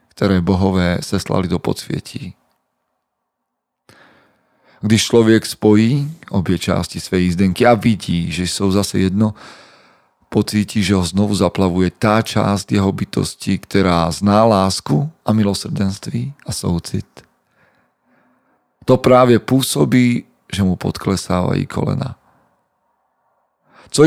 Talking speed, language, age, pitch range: 105 wpm, Slovak, 40-59, 95-115 Hz